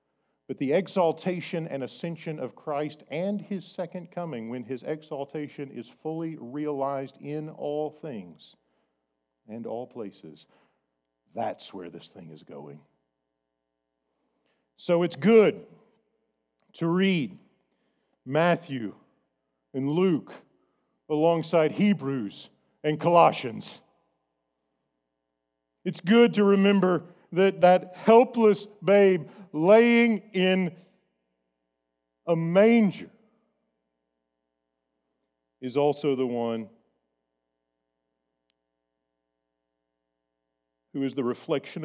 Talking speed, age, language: 85 wpm, 50-69, English